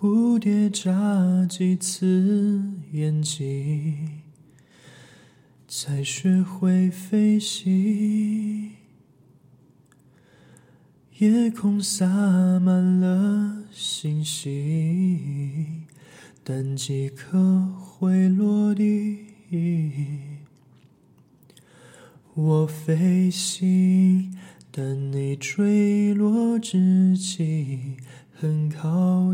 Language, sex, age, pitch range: Chinese, male, 20-39, 170-210 Hz